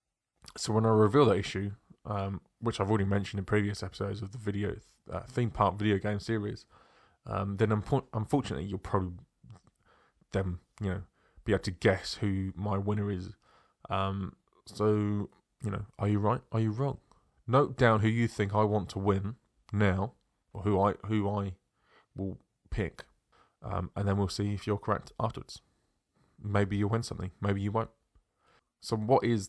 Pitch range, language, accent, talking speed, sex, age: 95-110 Hz, English, British, 175 wpm, male, 20-39